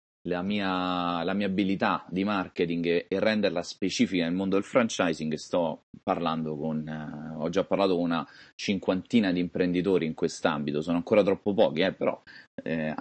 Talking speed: 155 wpm